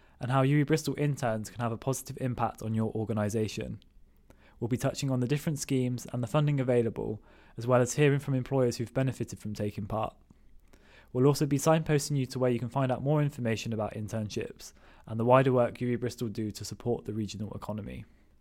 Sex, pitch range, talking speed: male, 110-135 Hz, 200 wpm